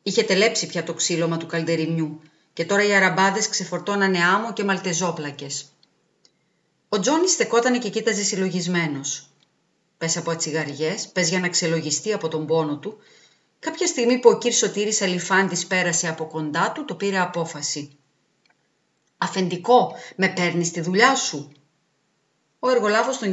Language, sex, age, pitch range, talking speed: Greek, female, 40-59, 155-210 Hz, 140 wpm